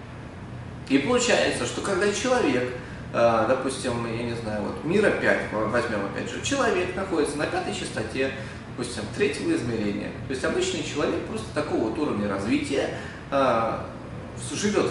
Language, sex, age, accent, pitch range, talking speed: Russian, male, 30-49, native, 120-200 Hz, 135 wpm